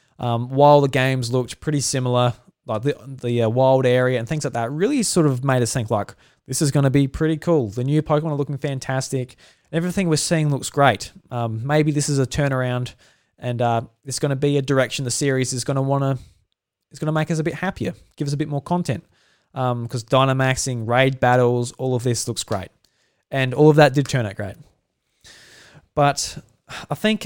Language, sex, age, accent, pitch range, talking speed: English, male, 20-39, Australian, 115-145 Hz, 215 wpm